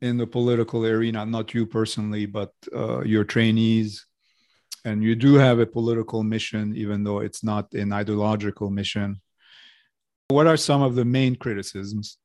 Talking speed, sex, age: 155 wpm, male, 40-59